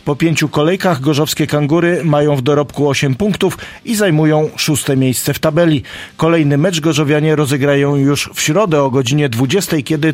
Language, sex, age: Polish, male, 40-59